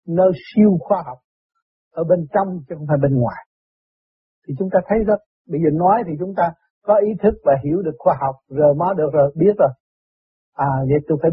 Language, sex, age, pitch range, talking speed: Vietnamese, male, 60-79, 150-200 Hz, 215 wpm